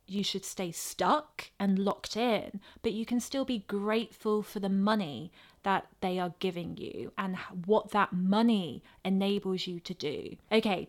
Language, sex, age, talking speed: English, female, 20-39, 165 wpm